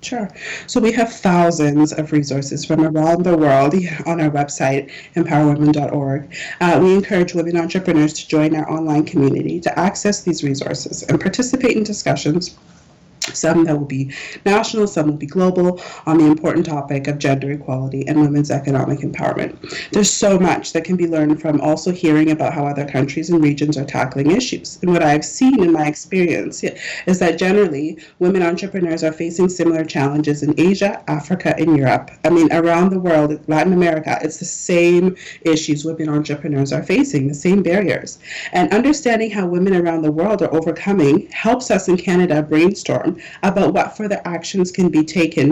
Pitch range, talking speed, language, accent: 150-180 Hz, 175 wpm, English, American